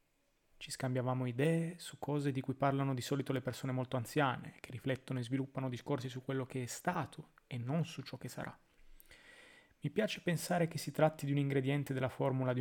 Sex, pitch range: male, 125-150 Hz